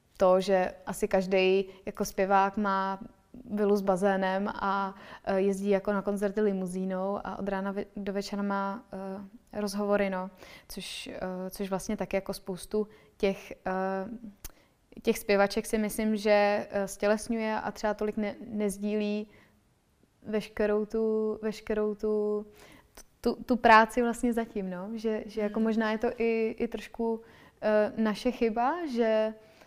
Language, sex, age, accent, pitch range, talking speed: Czech, female, 20-39, native, 195-220 Hz, 130 wpm